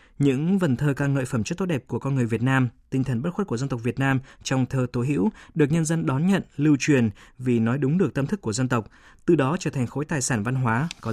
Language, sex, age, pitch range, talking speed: Vietnamese, male, 20-39, 120-150 Hz, 285 wpm